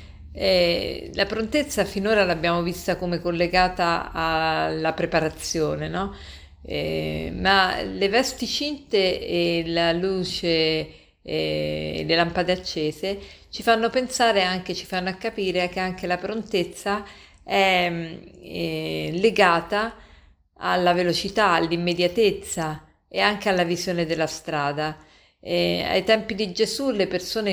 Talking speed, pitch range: 115 wpm, 160-195 Hz